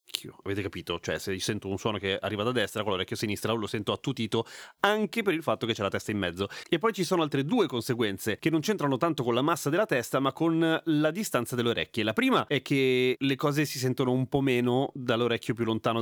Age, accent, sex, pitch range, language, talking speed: 30-49, native, male, 110-155 Hz, Italian, 235 wpm